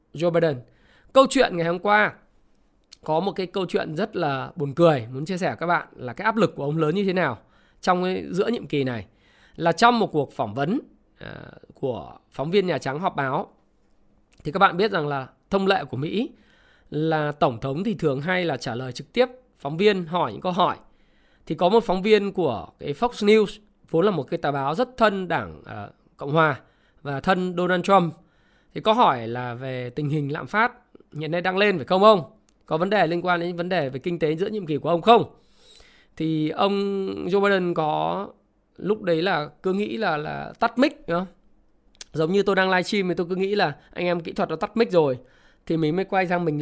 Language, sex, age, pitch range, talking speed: Vietnamese, male, 20-39, 150-195 Hz, 225 wpm